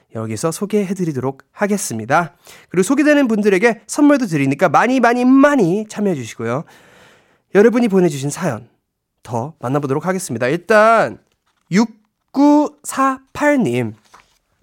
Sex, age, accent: male, 20-39, native